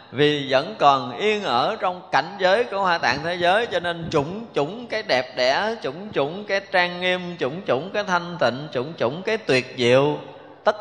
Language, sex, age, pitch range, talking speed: Vietnamese, male, 20-39, 125-175 Hz, 200 wpm